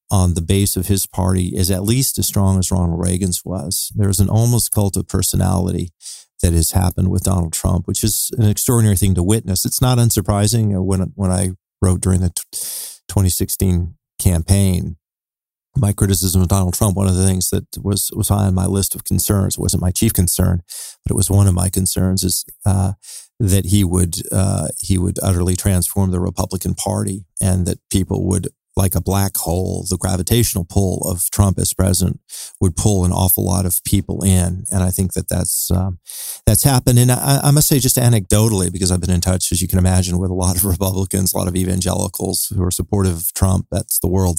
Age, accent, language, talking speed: 40-59, American, English, 205 wpm